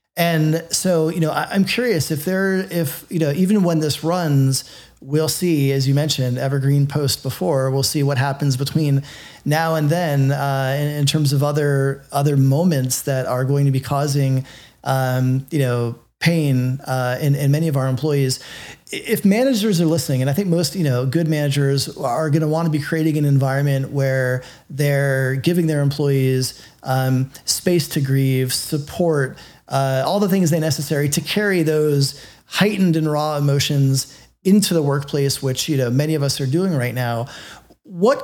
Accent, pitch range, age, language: American, 135-160 Hz, 30-49, English